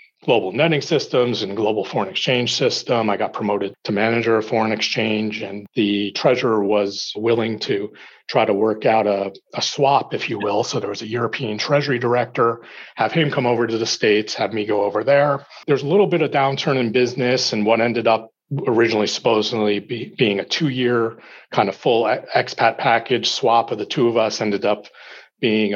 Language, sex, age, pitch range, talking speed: English, male, 40-59, 110-135 Hz, 195 wpm